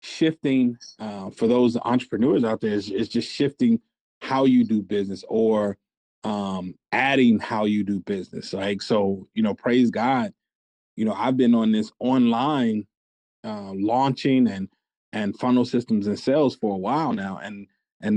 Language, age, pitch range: English, 30-49, 110-140 Hz